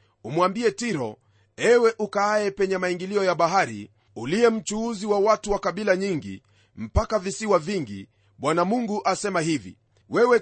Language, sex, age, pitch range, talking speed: Swahili, male, 40-59, 145-210 Hz, 130 wpm